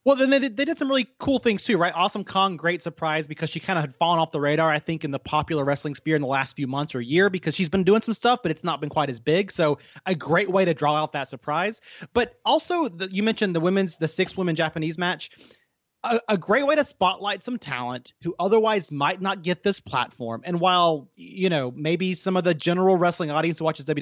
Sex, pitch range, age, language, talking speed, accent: male, 150-200 Hz, 30-49, English, 250 wpm, American